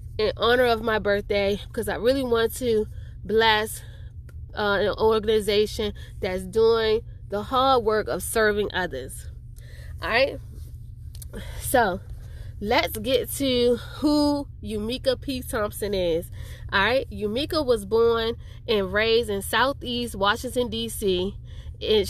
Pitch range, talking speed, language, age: 200-260 Hz, 115 wpm, English, 20-39